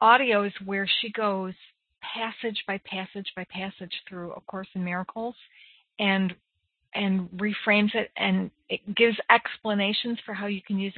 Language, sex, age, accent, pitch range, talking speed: English, female, 40-59, American, 185-215 Hz, 155 wpm